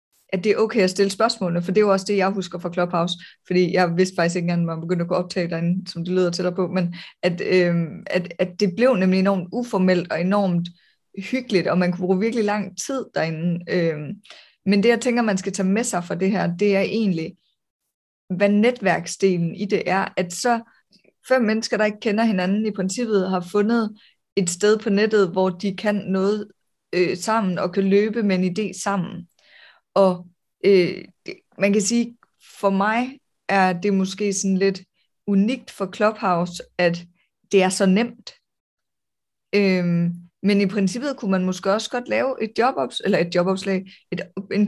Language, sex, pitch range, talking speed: Danish, female, 180-210 Hz, 190 wpm